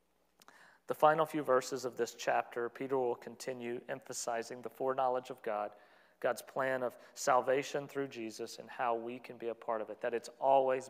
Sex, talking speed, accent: male, 180 wpm, American